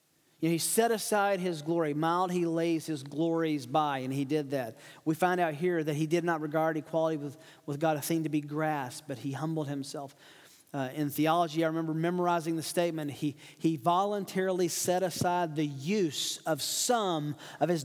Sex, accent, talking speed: male, American, 190 wpm